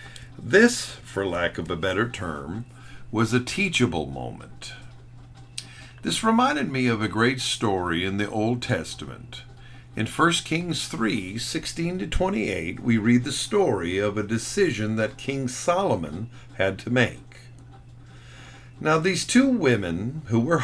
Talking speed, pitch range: 135 wpm, 110-130 Hz